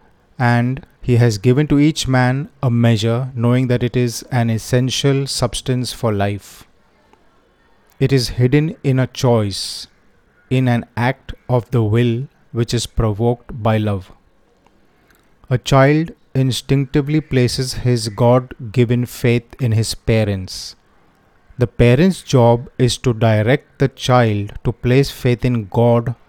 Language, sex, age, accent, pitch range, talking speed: Hindi, male, 30-49, native, 115-135 Hz, 135 wpm